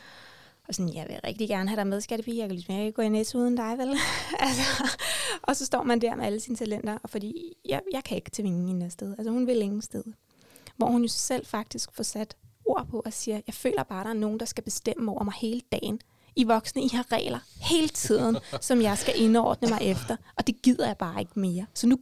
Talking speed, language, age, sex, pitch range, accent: 255 wpm, Danish, 20-39, female, 205-250 Hz, native